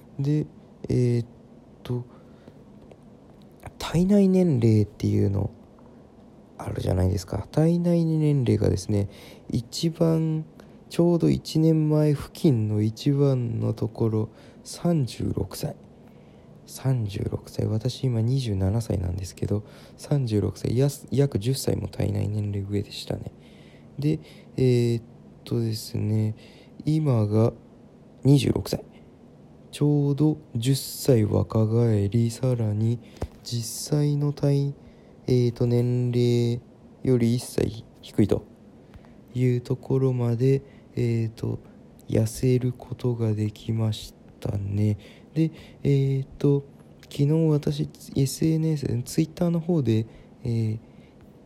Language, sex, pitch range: Japanese, male, 110-140 Hz